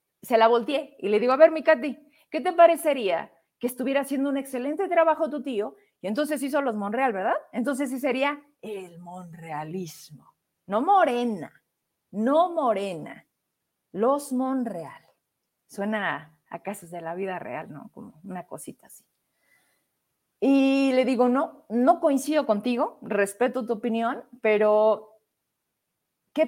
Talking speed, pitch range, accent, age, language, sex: 145 wpm, 220-305 Hz, Mexican, 40-59, Spanish, female